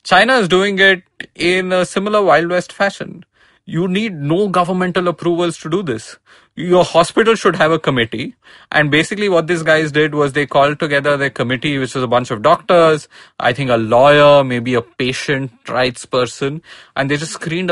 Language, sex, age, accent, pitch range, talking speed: English, male, 20-39, Indian, 125-170 Hz, 185 wpm